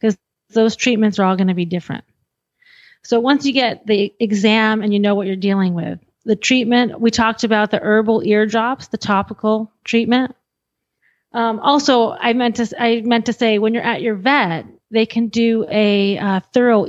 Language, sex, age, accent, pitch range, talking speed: English, female, 30-49, American, 200-240 Hz, 185 wpm